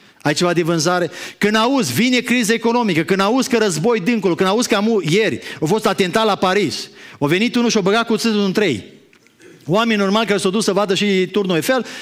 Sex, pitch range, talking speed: male, 160-225 Hz, 220 wpm